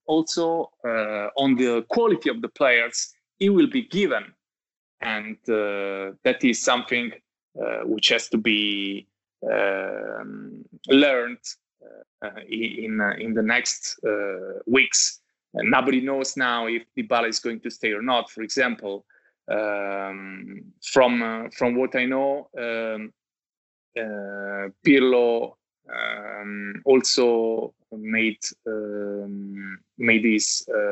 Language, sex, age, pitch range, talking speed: English, male, 20-39, 105-140 Hz, 120 wpm